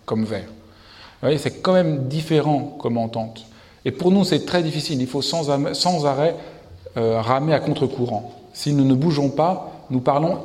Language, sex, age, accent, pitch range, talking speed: French, male, 50-69, French, 120-160 Hz, 155 wpm